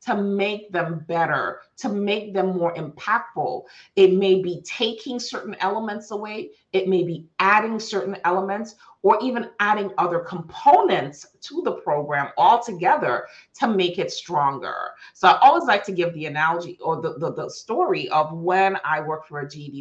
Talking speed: 165 wpm